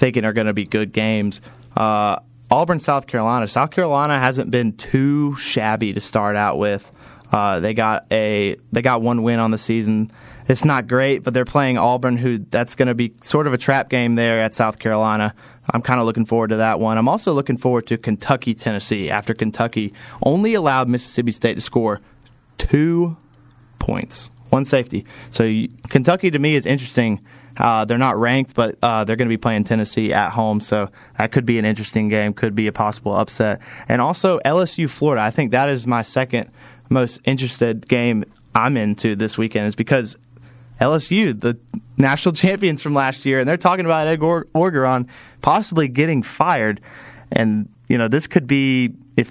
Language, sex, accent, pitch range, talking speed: English, male, American, 110-135 Hz, 185 wpm